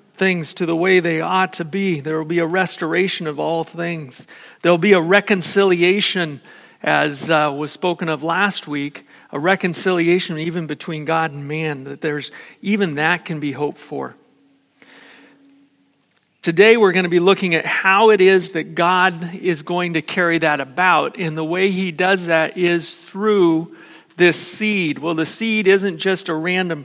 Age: 40-59